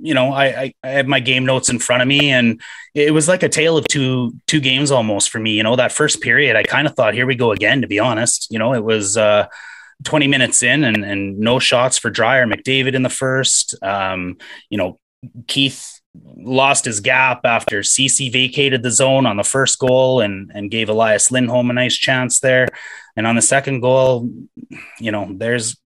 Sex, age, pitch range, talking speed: male, 30-49, 115-140 Hz, 215 wpm